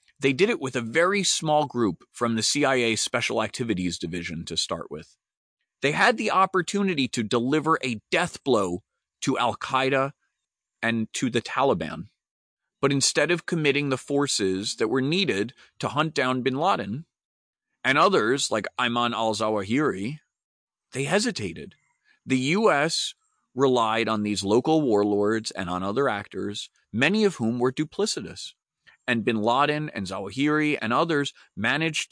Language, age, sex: English, 30-49, male